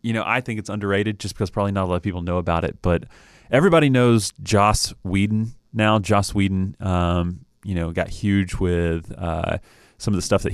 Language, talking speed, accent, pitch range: English, 210 wpm, American, 90-110 Hz